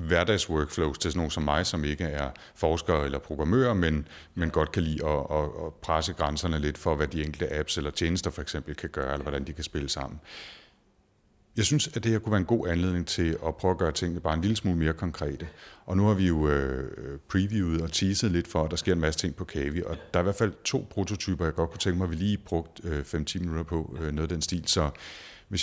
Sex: male